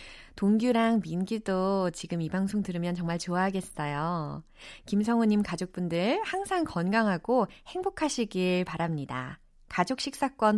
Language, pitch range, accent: Korean, 175-260 Hz, native